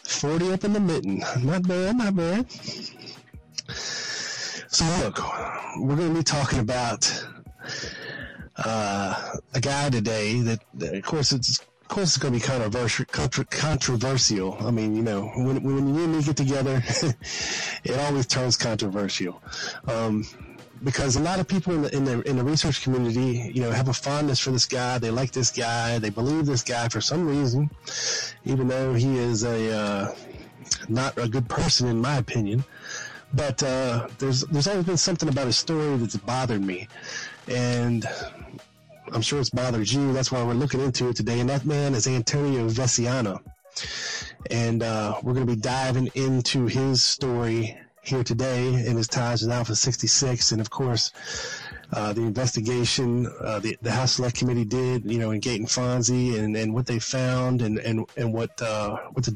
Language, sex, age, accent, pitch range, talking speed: English, male, 30-49, American, 115-140 Hz, 175 wpm